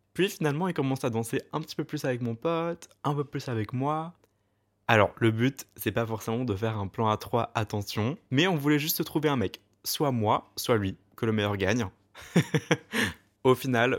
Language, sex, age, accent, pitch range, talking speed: French, male, 20-39, French, 100-125 Hz, 210 wpm